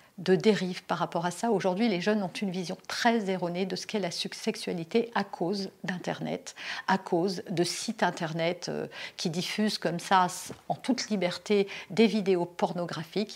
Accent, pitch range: French, 185-245 Hz